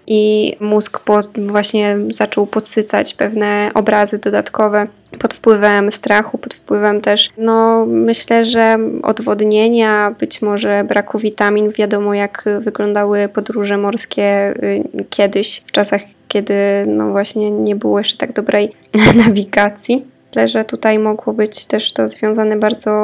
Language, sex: Polish, female